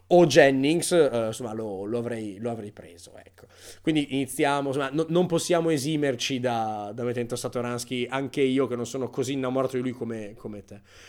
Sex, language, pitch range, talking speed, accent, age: male, Italian, 115-160 Hz, 180 wpm, native, 20-39